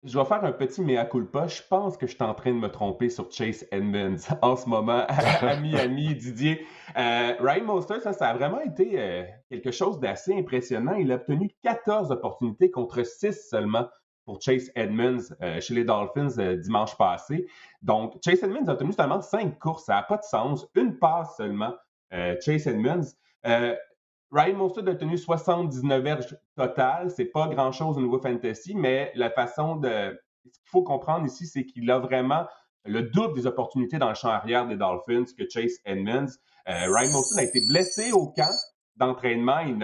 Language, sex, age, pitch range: French, male, 30-49, 120-180 Hz